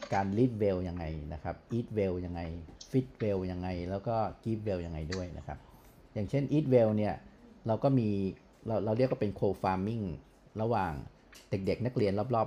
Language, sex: Thai, male